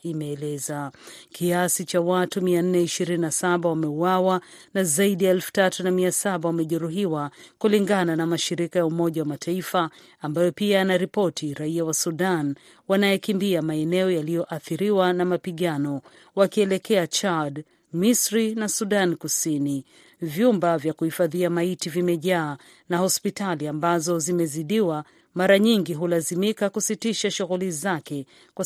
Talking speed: 110 wpm